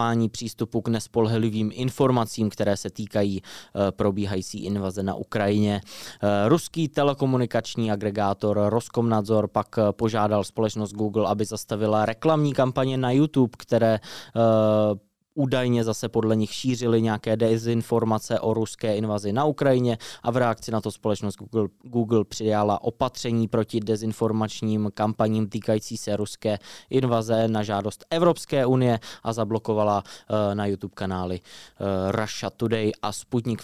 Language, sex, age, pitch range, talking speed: Czech, male, 20-39, 105-120 Hz, 120 wpm